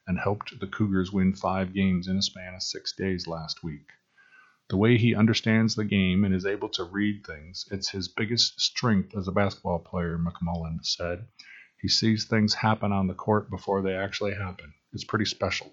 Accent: American